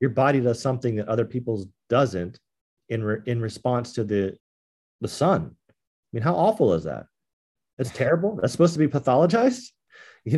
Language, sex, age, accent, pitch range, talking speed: English, male, 30-49, American, 85-120 Hz, 175 wpm